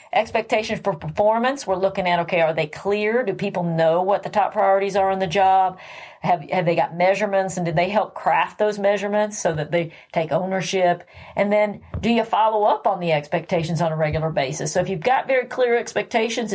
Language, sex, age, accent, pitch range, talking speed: English, female, 40-59, American, 175-210 Hz, 210 wpm